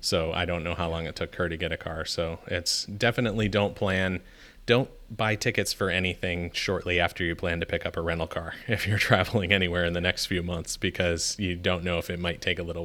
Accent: American